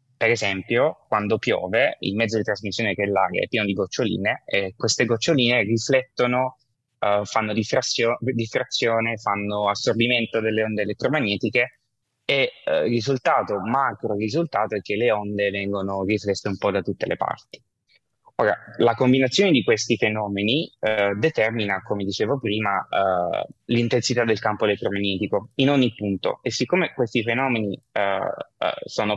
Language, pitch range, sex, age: Italian, 100-125 Hz, male, 20-39